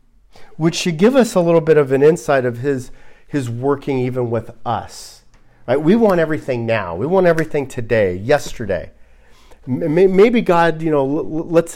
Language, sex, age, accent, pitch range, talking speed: English, male, 40-59, American, 120-165 Hz, 165 wpm